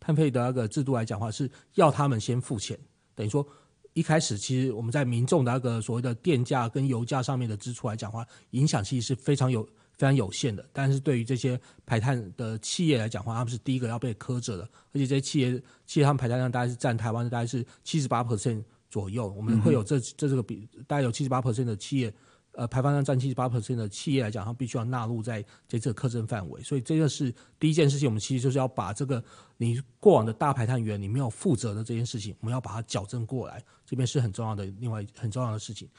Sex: male